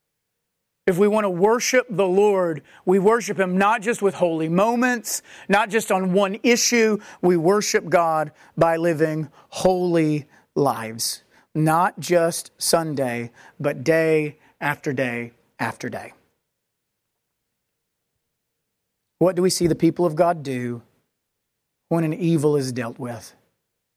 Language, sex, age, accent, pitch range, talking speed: English, male, 40-59, American, 150-185 Hz, 130 wpm